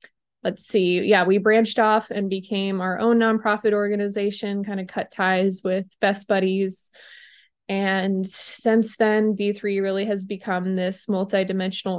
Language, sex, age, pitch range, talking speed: English, female, 20-39, 185-210 Hz, 140 wpm